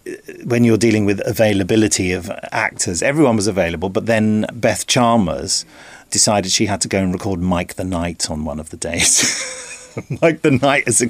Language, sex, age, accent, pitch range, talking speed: English, male, 40-59, British, 95-140 Hz, 185 wpm